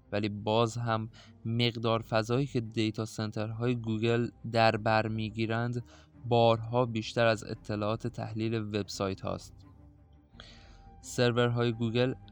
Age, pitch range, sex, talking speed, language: 20-39, 110-120 Hz, male, 100 wpm, Persian